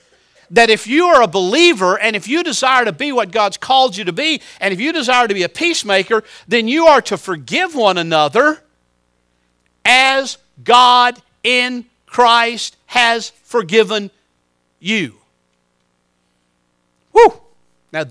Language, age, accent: English, 50-69, American